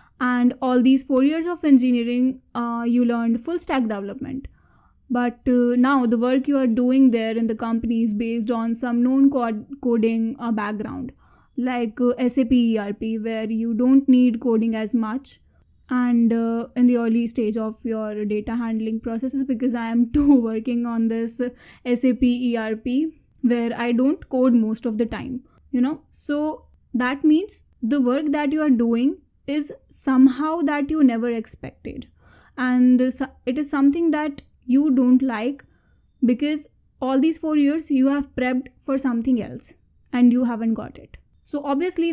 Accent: Indian